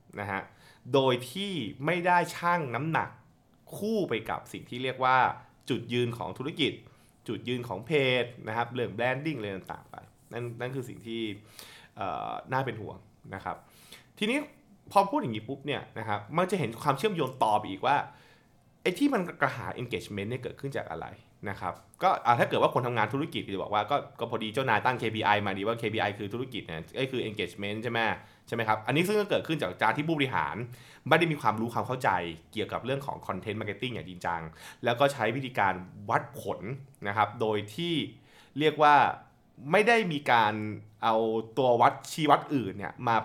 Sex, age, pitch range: male, 20-39, 110-145 Hz